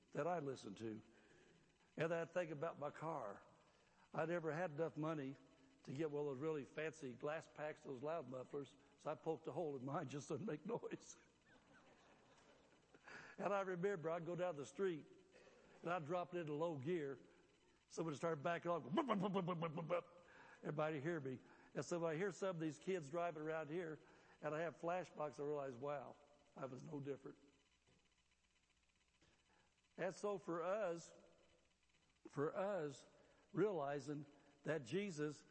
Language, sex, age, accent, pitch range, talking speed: English, male, 60-79, American, 145-180 Hz, 155 wpm